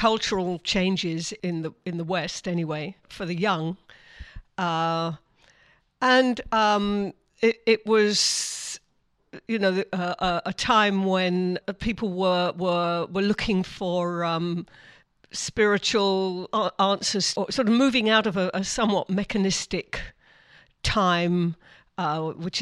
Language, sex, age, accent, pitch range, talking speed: English, female, 50-69, British, 175-200 Hz, 120 wpm